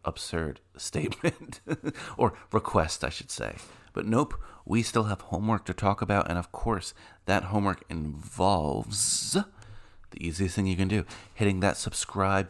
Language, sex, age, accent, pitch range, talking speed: English, male, 30-49, American, 90-105 Hz, 150 wpm